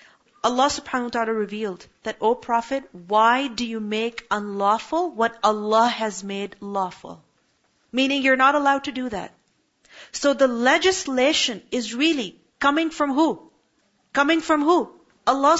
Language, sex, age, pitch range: English, female, 40-59, 230-295 Hz